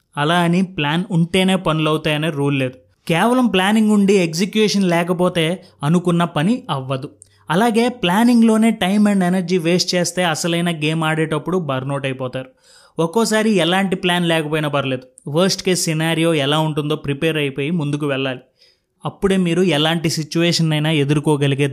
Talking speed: 135 wpm